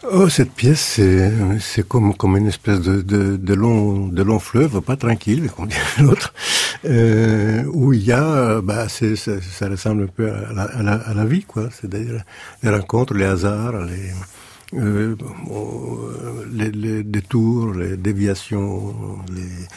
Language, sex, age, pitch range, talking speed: French, male, 60-79, 100-120 Hz, 165 wpm